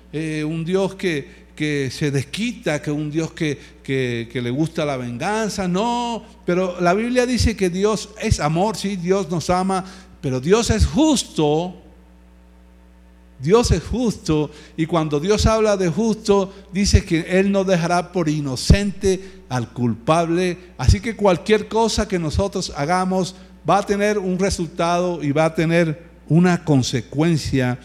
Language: Spanish